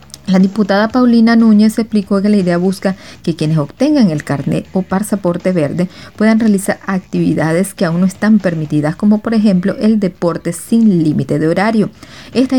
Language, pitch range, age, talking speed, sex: Spanish, 170-215 Hz, 40-59, 165 wpm, female